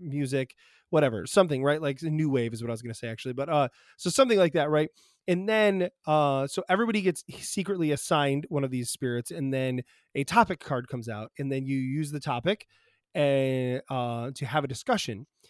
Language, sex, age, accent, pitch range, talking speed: English, male, 20-39, American, 135-185 Hz, 210 wpm